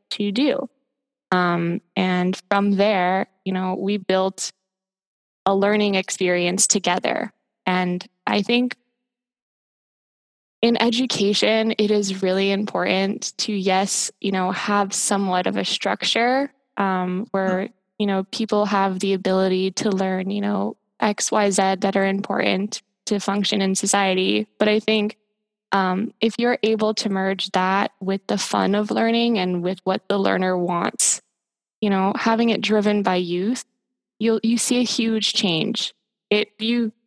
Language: English